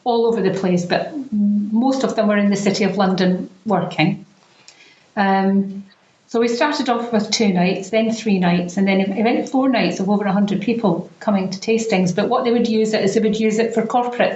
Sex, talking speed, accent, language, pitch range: female, 220 wpm, British, English, 185-220 Hz